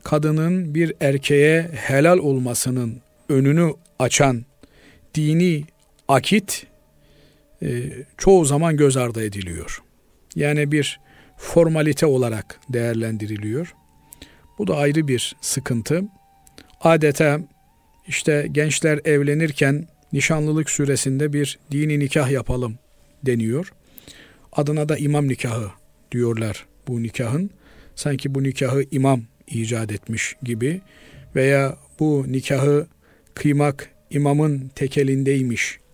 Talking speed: 90 wpm